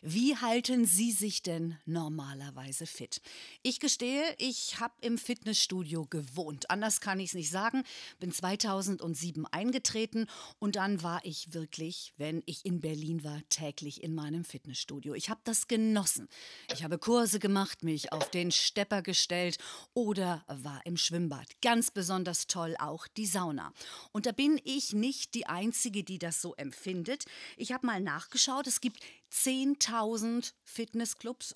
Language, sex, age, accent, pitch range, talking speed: German, female, 50-69, German, 170-240 Hz, 150 wpm